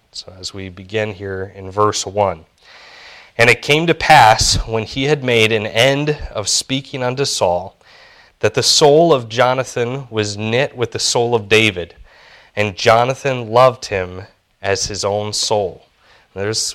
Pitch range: 95-115 Hz